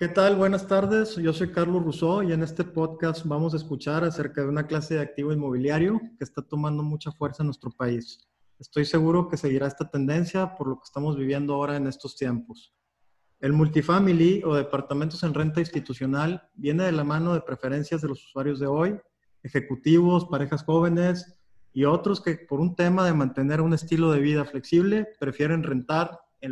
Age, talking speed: 30-49, 185 wpm